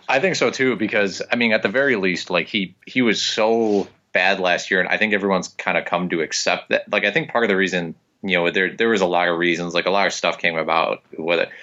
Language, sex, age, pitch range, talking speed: English, male, 20-39, 85-100 Hz, 275 wpm